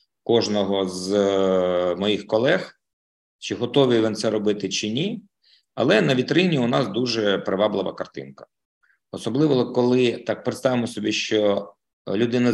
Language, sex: Ukrainian, male